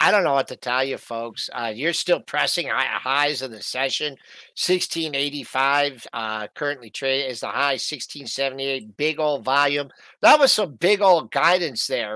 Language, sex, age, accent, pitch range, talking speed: English, male, 50-69, American, 135-185 Hz, 170 wpm